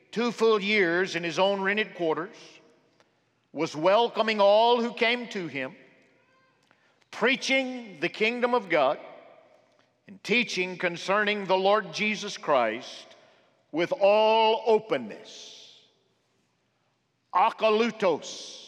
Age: 50-69